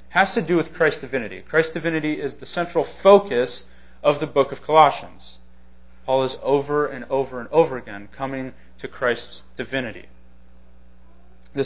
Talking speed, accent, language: 155 wpm, American, English